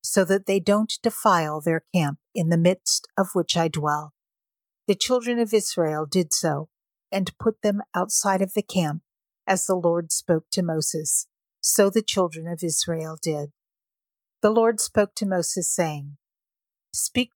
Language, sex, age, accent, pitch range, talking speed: English, female, 50-69, American, 170-210 Hz, 160 wpm